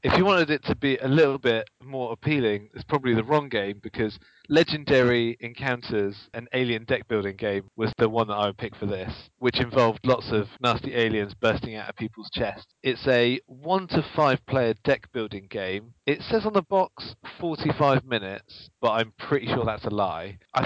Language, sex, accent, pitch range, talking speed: English, male, British, 105-130 Hz, 185 wpm